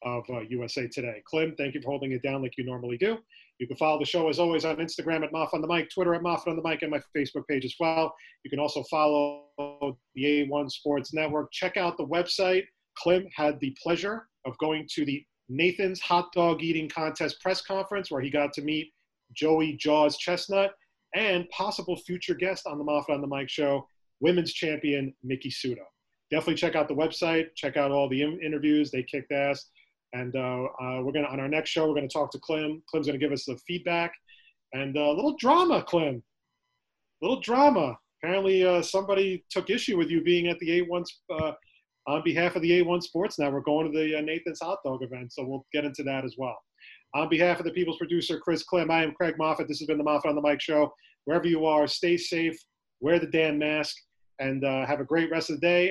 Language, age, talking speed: English, 30-49, 225 wpm